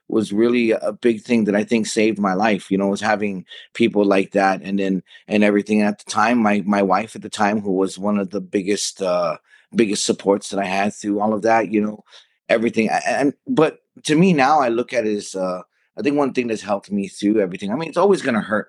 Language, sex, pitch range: English, male, 95-115 Hz